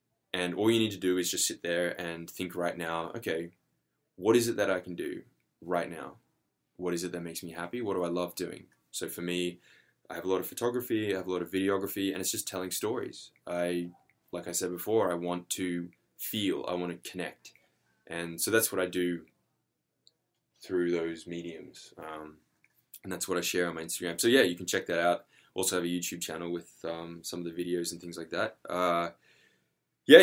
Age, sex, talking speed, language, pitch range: 10-29, male, 220 wpm, English, 85-95 Hz